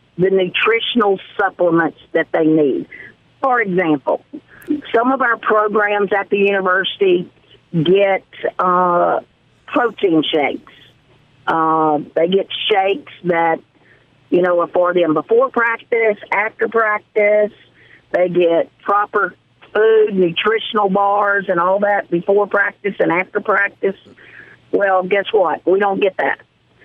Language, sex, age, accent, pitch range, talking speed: English, female, 50-69, American, 170-210 Hz, 120 wpm